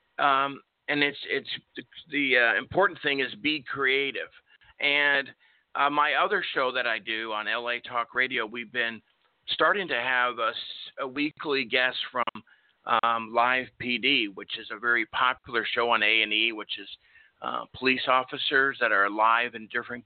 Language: English